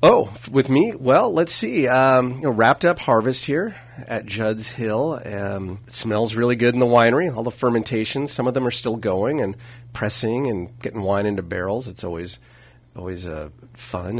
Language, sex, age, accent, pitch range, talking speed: English, male, 30-49, American, 105-130 Hz, 180 wpm